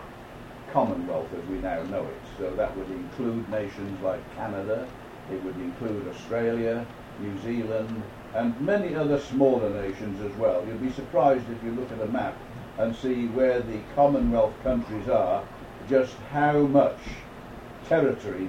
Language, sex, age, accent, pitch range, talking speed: English, male, 60-79, British, 115-140 Hz, 155 wpm